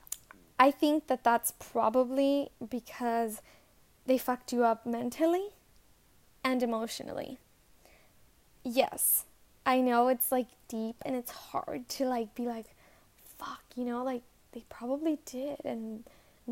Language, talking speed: English, 125 wpm